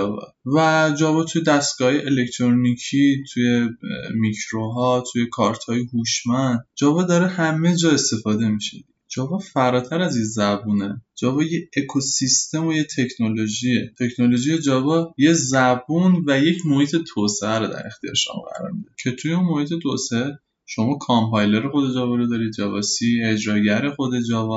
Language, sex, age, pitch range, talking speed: Persian, male, 20-39, 110-150 Hz, 135 wpm